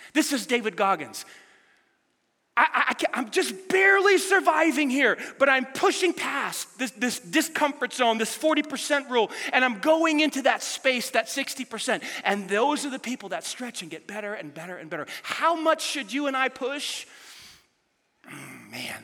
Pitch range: 225-330 Hz